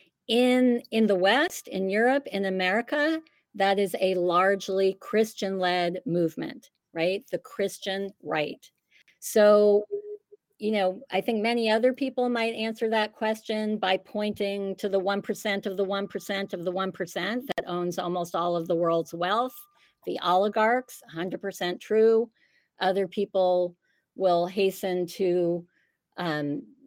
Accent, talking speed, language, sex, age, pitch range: American, 135 wpm, English, female, 50-69, 185-225 Hz